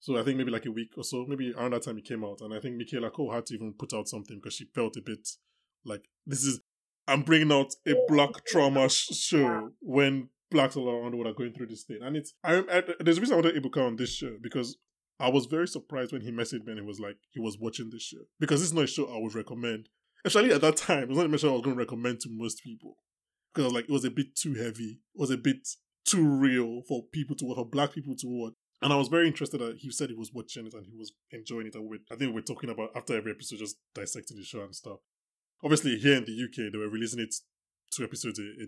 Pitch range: 115-145 Hz